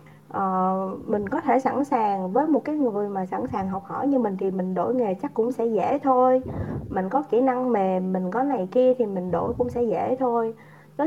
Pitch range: 185-260 Hz